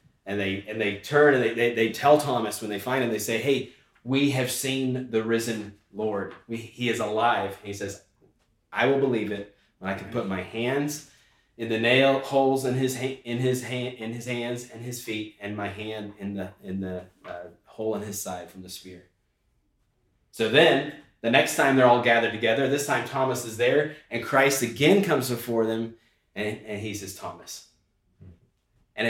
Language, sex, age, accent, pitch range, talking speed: English, male, 30-49, American, 100-130 Hz, 200 wpm